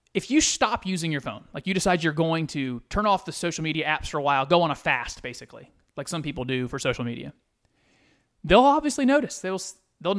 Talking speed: 225 wpm